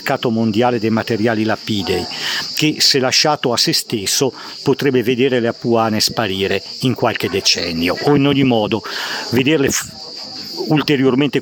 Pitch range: 115-140 Hz